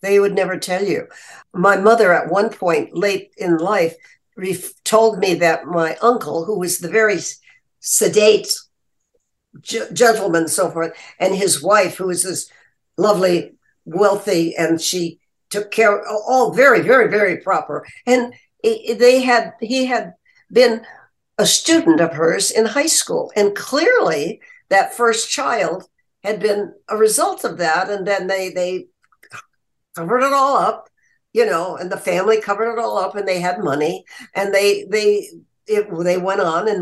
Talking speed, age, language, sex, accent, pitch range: 155 wpm, 60-79, English, female, American, 185-265 Hz